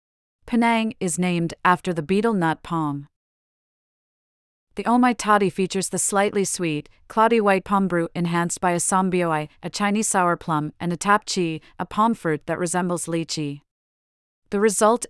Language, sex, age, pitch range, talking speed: English, female, 40-59, 165-210 Hz, 165 wpm